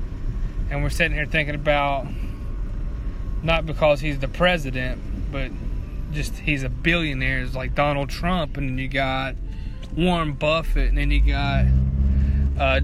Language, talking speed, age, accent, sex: English, 145 wpm, 20-39, American, male